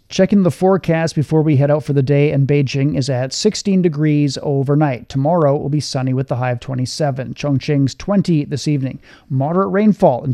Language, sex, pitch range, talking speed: English, male, 140-170 Hz, 190 wpm